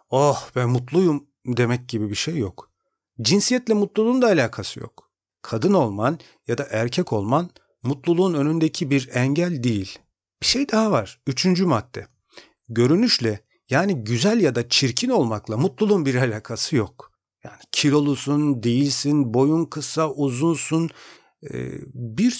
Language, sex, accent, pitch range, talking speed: Turkish, male, native, 115-150 Hz, 130 wpm